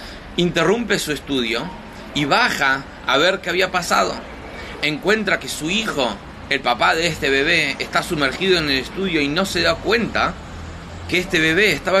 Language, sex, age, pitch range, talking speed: Spanish, male, 30-49, 125-180 Hz, 165 wpm